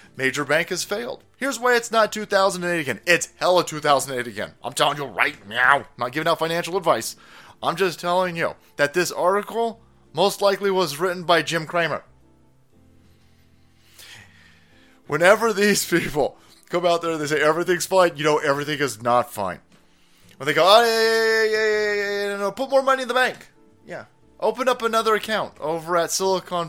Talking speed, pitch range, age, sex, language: 165 wpm, 155-205 Hz, 30-49, male, English